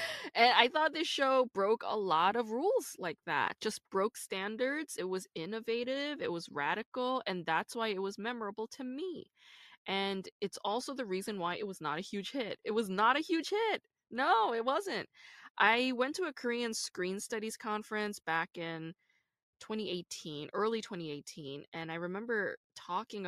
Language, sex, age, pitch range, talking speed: English, female, 20-39, 165-225 Hz, 175 wpm